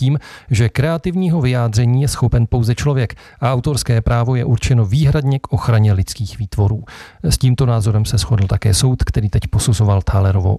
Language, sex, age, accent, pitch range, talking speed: Czech, male, 40-59, native, 110-125 Hz, 165 wpm